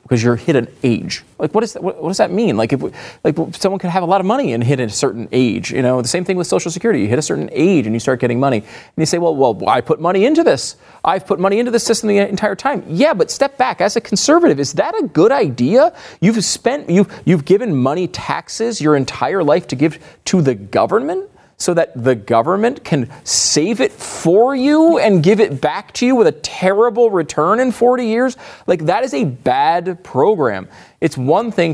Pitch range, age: 125-200 Hz, 30-49